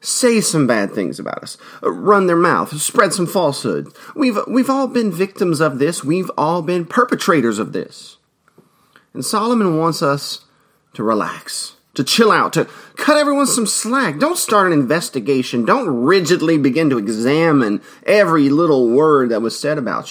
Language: English